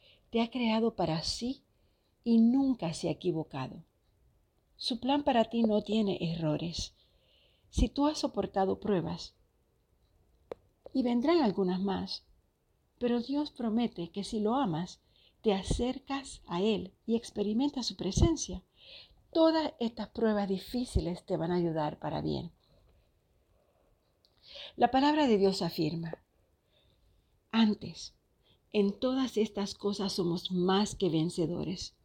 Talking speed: 120 wpm